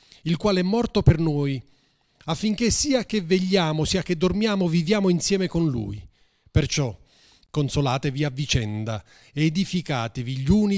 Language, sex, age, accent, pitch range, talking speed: Italian, male, 30-49, native, 130-200 Hz, 140 wpm